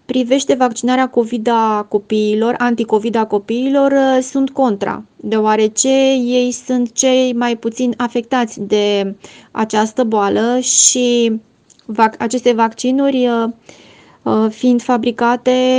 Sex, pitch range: female, 215-250 Hz